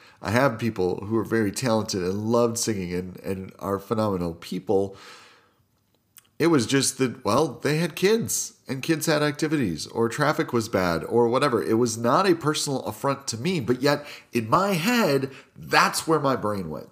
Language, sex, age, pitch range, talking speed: English, male, 40-59, 100-135 Hz, 180 wpm